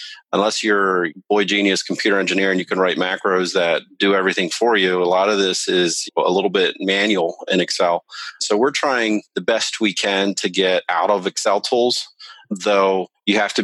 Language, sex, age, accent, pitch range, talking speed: English, male, 30-49, American, 90-105 Hz, 200 wpm